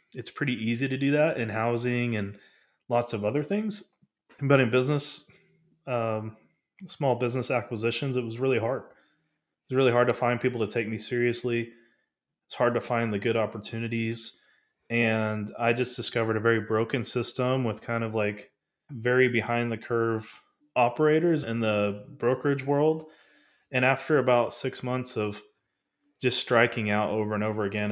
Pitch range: 105-125 Hz